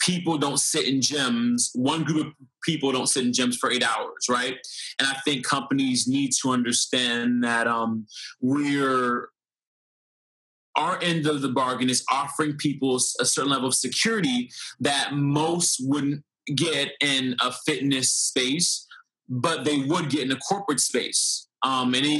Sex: male